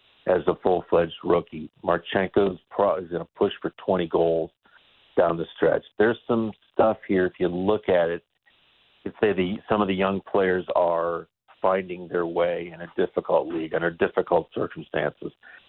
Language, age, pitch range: English, 50-69, 85-100 Hz